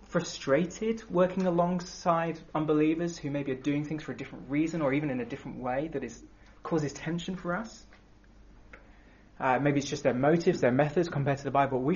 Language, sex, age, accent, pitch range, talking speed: English, male, 20-39, British, 145-190 Hz, 190 wpm